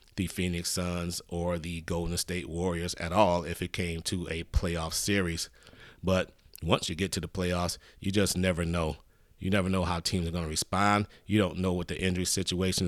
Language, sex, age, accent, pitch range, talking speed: English, male, 30-49, American, 85-95 Hz, 200 wpm